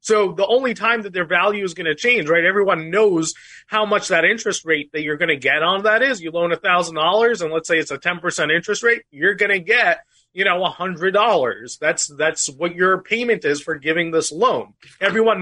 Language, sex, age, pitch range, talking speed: English, male, 30-49, 170-215 Hz, 220 wpm